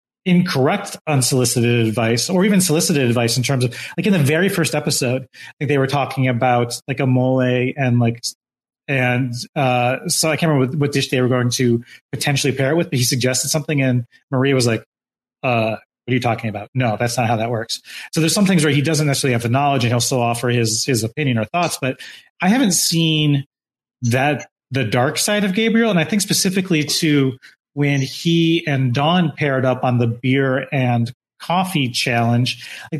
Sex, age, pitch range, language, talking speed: male, 30-49, 125-155 Hz, English, 200 wpm